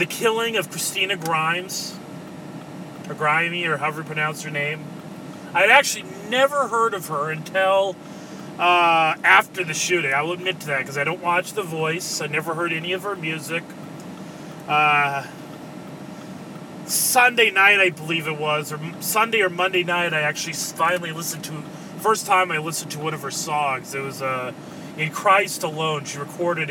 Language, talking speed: English, 175 wpm